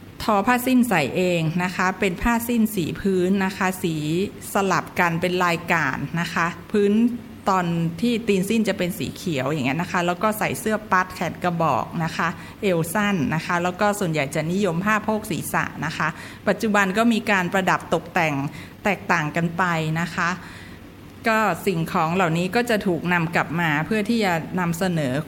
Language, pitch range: Thai, 175-210 Hz